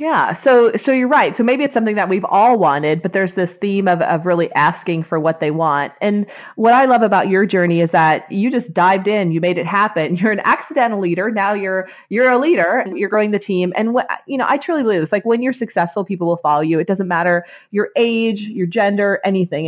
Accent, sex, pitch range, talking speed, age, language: American, female, 170-220 Hz, 245 wpm, 30-49, English